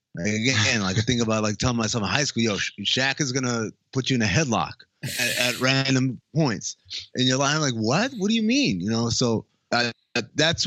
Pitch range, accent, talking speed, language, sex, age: 100-130 Hz, American, 210 wpm, English, male, 30-49